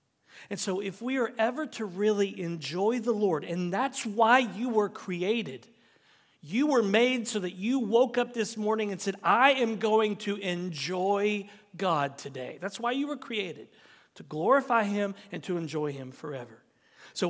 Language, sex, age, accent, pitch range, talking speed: English, male, 40-59, American, 145-220 Hz, 175 wpm